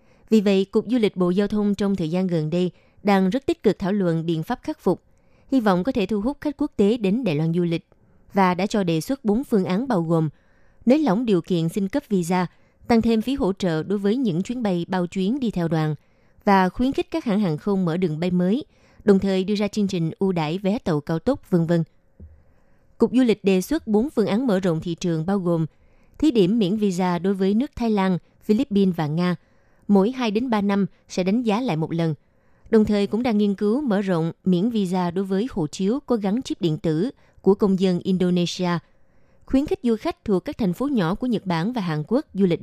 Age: 20-39